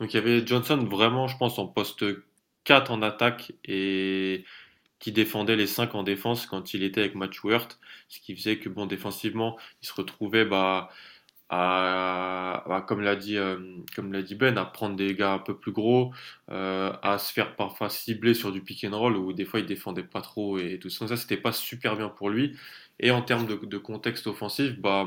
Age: 20-39